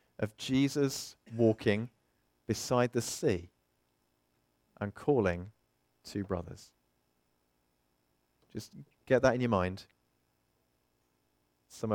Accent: British